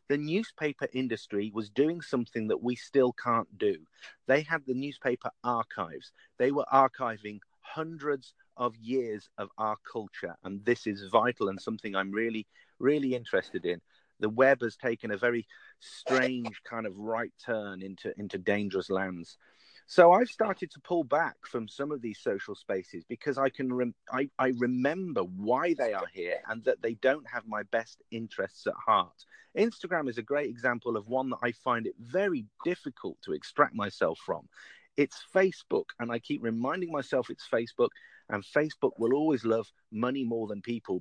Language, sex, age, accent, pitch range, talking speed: Italian, male, 30-49, British, 115-150 Hz, 175 wpm